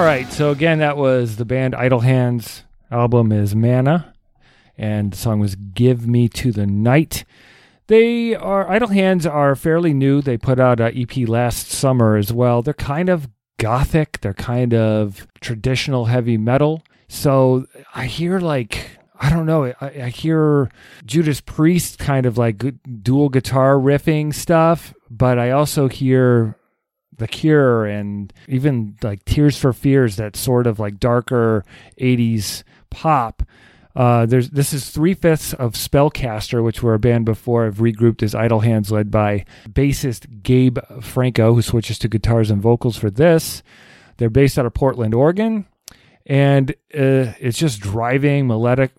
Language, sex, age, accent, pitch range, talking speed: English, male, 40-59, American, 115-140 Hz, 155 wpm